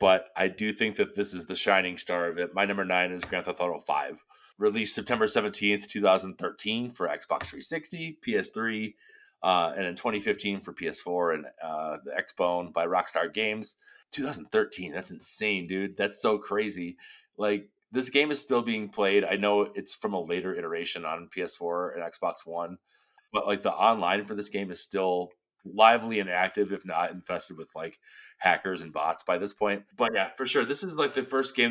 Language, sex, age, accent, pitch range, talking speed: English, male, 30-49, American, 90-110 Hz, 185 wpm